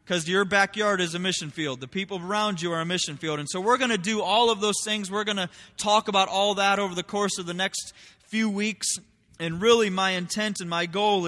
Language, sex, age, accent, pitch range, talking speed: English, male, 20-39, American, 175-210 Hz, 250 wpm